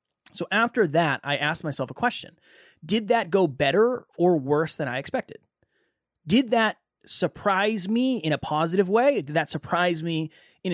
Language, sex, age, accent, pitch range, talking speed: English, male, 20-39, American, 150-195 Hz, 170 wpm